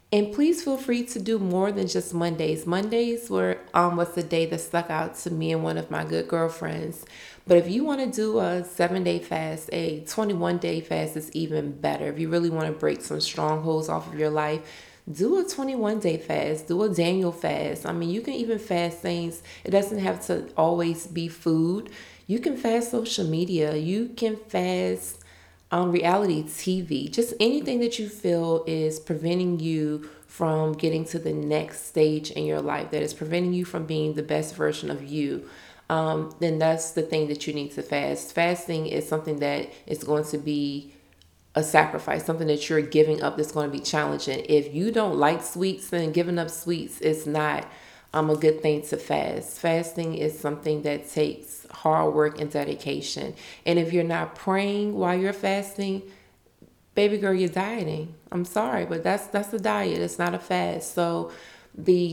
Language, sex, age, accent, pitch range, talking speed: English, female, 20-39, American, 150-180 Hz, 190 wpm